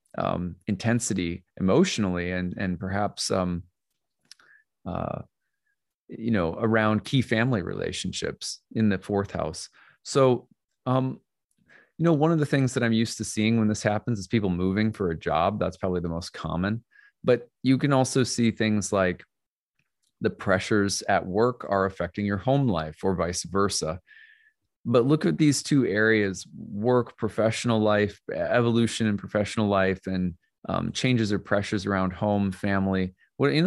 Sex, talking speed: male, 155 wpm